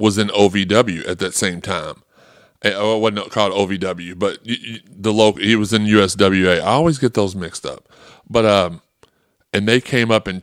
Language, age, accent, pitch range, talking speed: English, 30-49, American, 95-110 Hz, 180 wpm